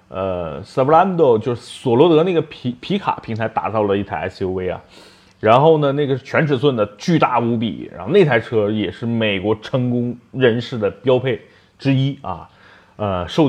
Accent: native